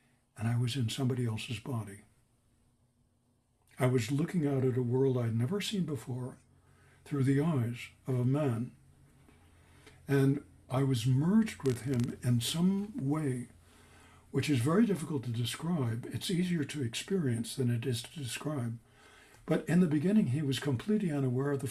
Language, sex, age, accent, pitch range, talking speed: English, male, 60-79, American, 120-150 Hz, 160 wpm